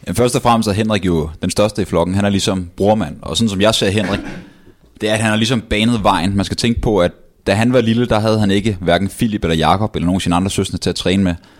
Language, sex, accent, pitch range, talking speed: Danish, male, native, 90-110 Hz, 285 wpm